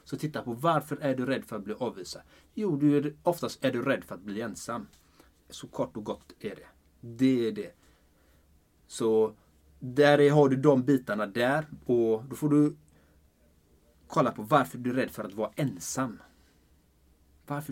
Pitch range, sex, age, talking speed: 100-140 Hz, male, 30-49, 175 wpm